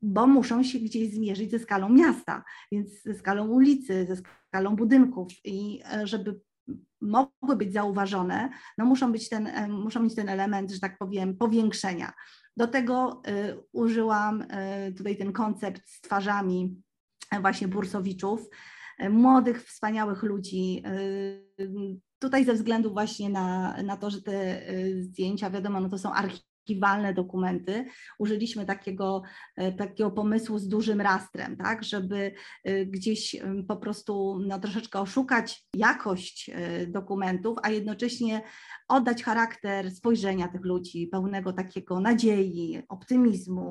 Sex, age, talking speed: female, 20-39, 120 wpm